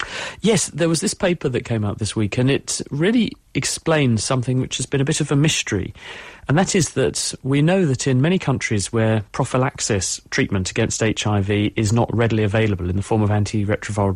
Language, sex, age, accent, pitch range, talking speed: English, male, 40-59, British, 105-130 Hz, 200 wpm